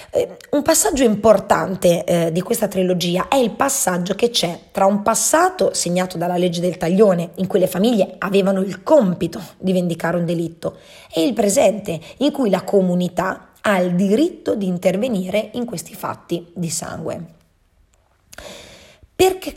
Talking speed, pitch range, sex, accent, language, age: 150 wpm, 180-225 Hz, female, native, Italian, 20-39